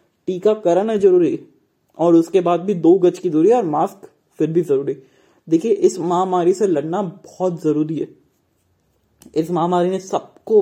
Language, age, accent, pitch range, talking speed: Hindi, 20-39, native, 155-195 Hz, 160 wpm